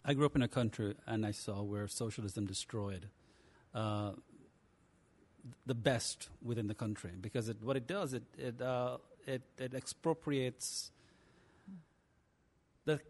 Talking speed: 135 wpm